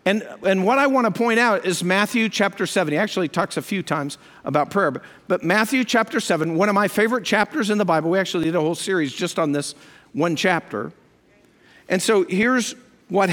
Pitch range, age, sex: 185-240 Hz, 50-69, male